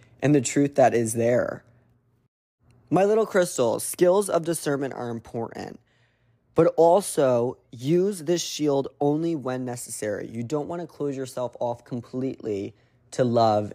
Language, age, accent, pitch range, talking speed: English, 20-39, American, 115-145 Hz, 140 wpm